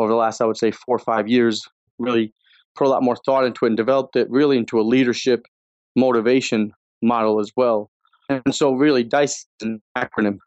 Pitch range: 110-130 Hz